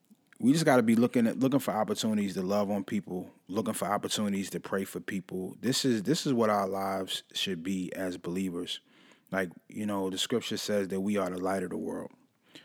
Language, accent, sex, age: English, American, male, 20-39